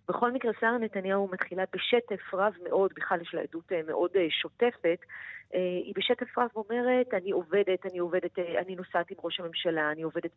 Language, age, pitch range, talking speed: Hebrew, 30-49, 170-225 Hz, 170 wpm